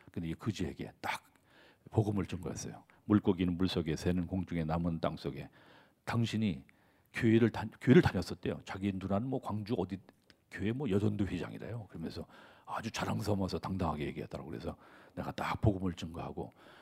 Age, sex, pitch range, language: 40-59, male, 90-115 Hz, Korean